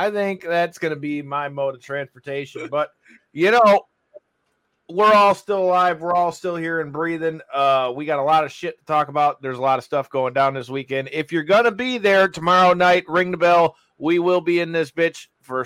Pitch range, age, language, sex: 140-180 Hz, 30-49, English, male